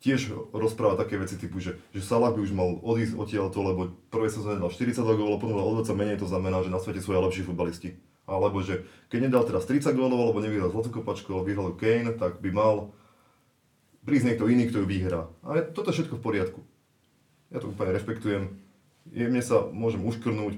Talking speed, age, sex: 200 wpm, 30-49, male